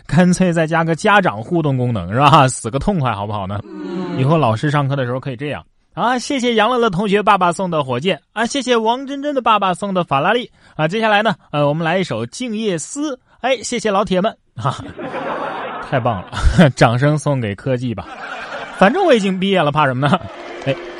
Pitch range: 120-195 Hz